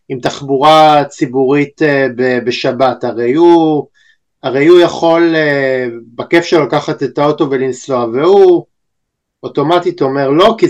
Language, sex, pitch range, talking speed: Hebrew, male, 135-175 Hz, 110 wpm